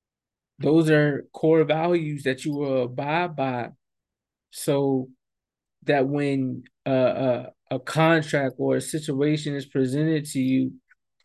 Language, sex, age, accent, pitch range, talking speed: English, male, 20-39, American, 135-155 Hz, 125 wpm